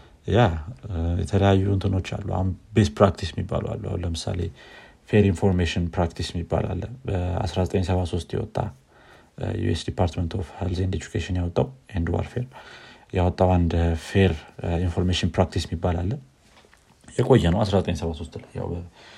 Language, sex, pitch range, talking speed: Amharic, male, 85-105 Hz, 115 wpm